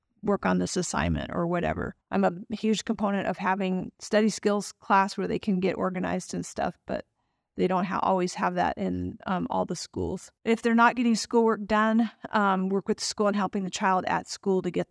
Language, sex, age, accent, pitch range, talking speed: English, female, 40-59, American, 185-210 Hz, 205 wpm